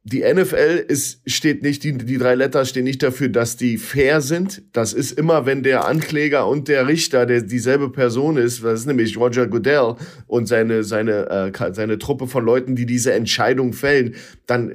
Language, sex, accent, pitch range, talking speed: German, male, German, 120-145 Hz, 190 wpm